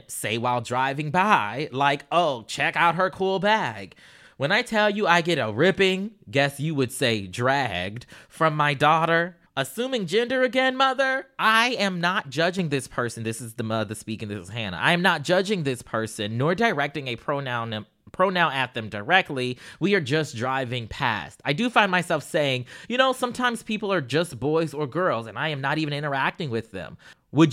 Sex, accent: male, American